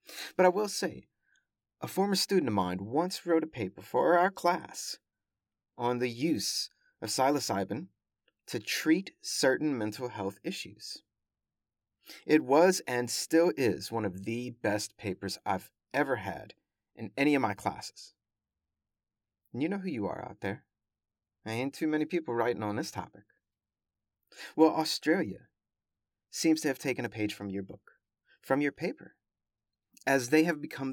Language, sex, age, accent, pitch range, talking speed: English, male, 30-49, American, 105-155 Hz, 155 wpm